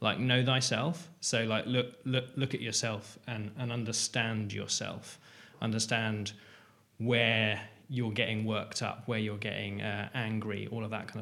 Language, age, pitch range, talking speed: English, 20-39, 105-120 Hz, 155 wpm